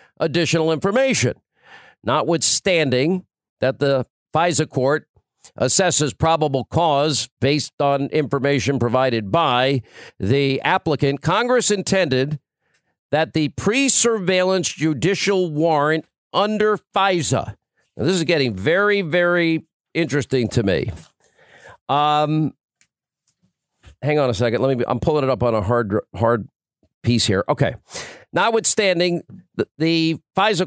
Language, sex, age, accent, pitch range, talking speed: English, male, 50-69, American, 140-185 Hz, 115 wpm